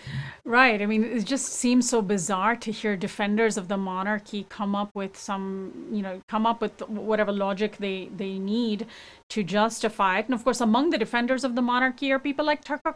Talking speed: 205 wpm